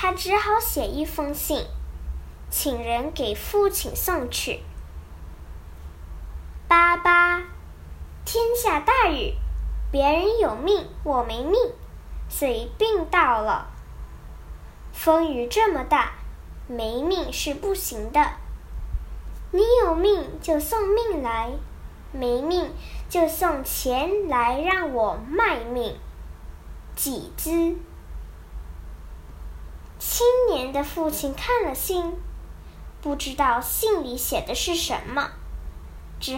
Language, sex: Chinese, male